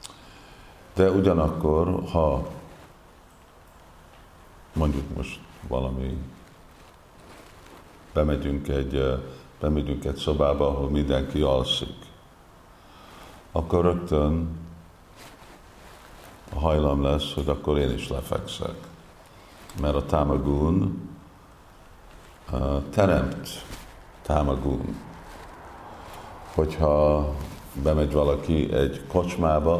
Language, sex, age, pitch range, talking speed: Hungarian, male, 50-69, 75-85 Hz, 65 wpm